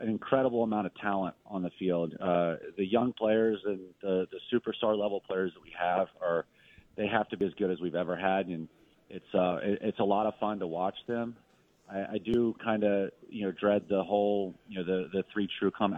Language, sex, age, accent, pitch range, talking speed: English, male, 30-49, American, 90-105 Hz, 230 wpm